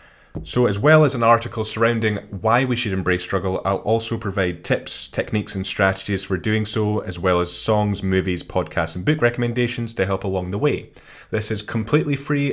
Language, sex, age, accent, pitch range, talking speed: English, male, 20-39, British, 90-115 Hz, 190 wpm